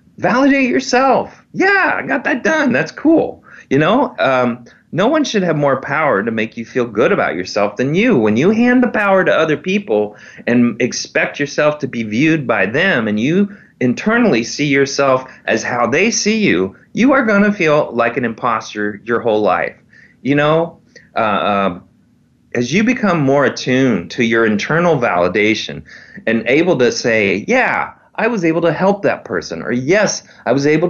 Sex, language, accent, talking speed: male, English, American, 185 wpm